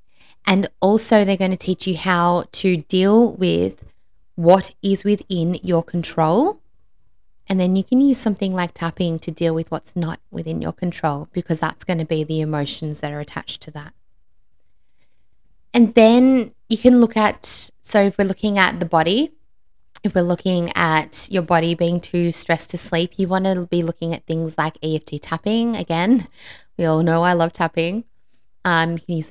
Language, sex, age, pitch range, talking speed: English, female, 20-39, 165-200 Hz, 180 wpm